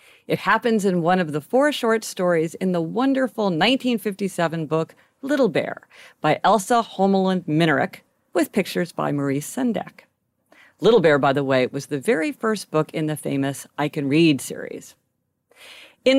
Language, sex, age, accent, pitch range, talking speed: English, female, 50-69, American, 165-265 Hz, 160 wpm